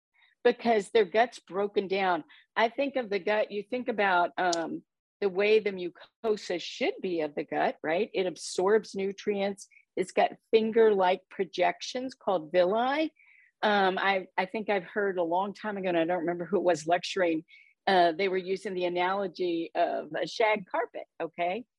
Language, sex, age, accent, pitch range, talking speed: English, female, 50-69, American, 180-225 Hz, 170 wpm